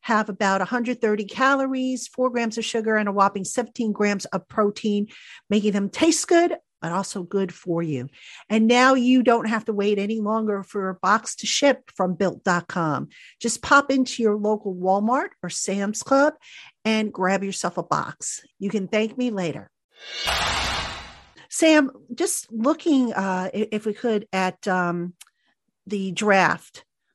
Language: English